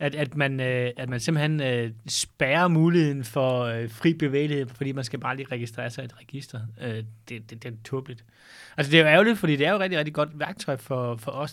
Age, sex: 30-49, male